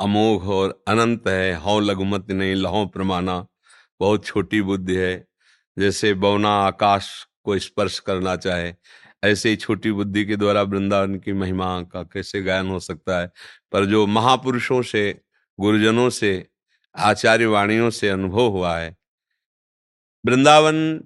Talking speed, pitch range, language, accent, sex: 130 wpm, 95-140 Hz, Hindi, native, male